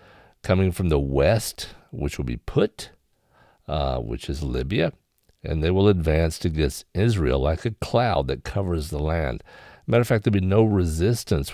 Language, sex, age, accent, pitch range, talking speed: English, male, 50-69, American, 70-100 Hz, 165 wpm